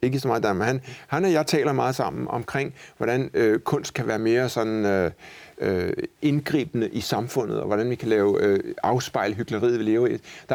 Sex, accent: male, native